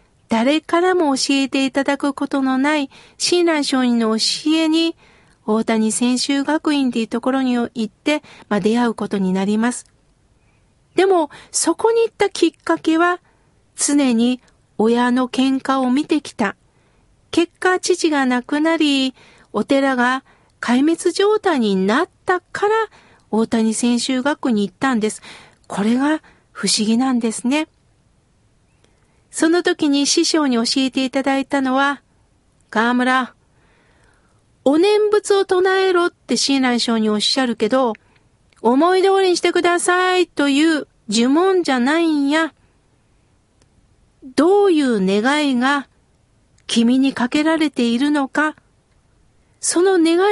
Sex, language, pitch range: female, Japanese, 245-330 Hz